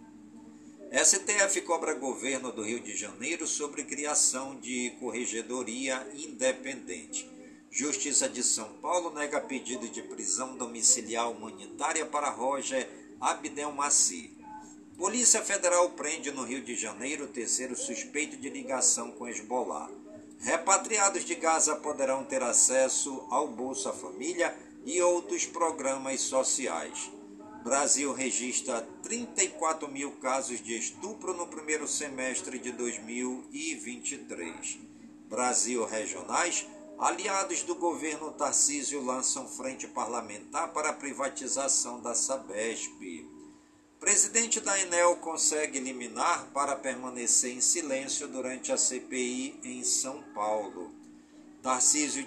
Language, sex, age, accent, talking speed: Portuguese, male, 50-69, Brazilian, 110 wpm